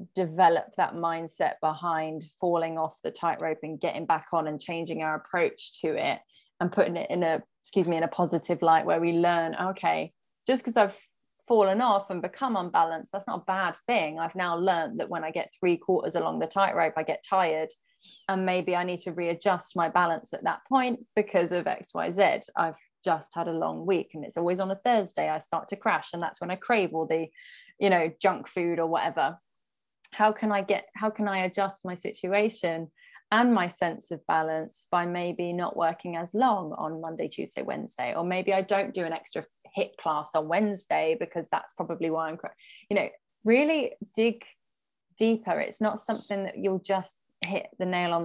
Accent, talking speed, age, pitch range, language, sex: British, 200 wpm, 20-39, 165-210 Hz, English, female